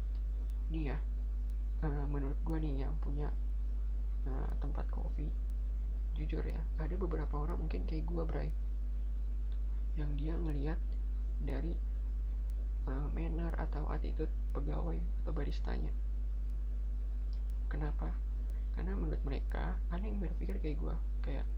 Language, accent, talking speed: Indonesian, native, 110 wpm